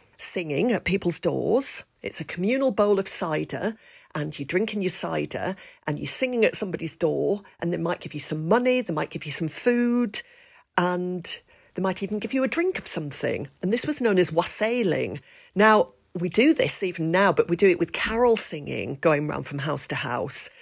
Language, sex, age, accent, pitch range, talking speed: English, female, 50-69, British, 165-225 Hz, 200 wpm